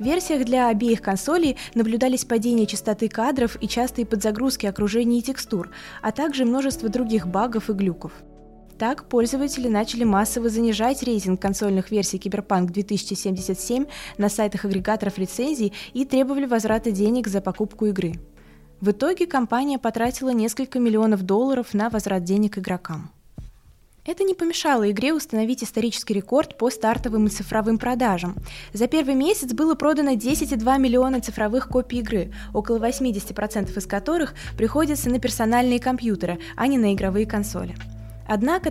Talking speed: 140 wpm